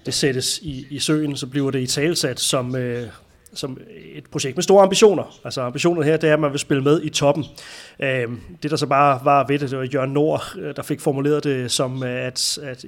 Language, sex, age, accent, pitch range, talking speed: Danish, male, 30-49, native, 125-150 Hz, 215 wpm